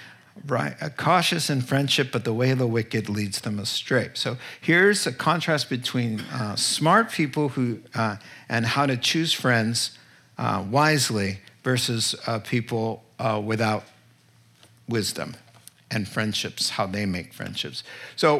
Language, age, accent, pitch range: English, 50-69, American, 115-145 Hz